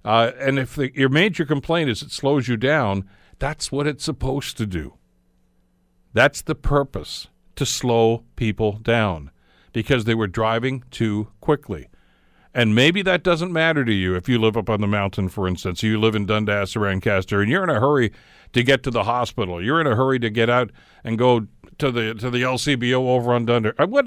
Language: English